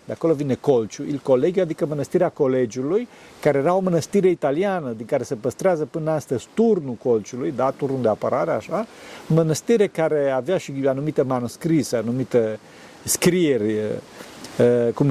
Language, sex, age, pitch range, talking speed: Romanian, male, 40-59, 130-175 Hz, 145 wpm